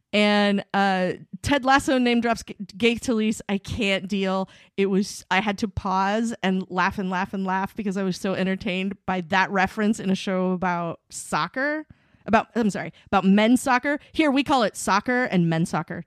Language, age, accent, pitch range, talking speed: English, 30-49, American, 185-225 Hz, 190 wpm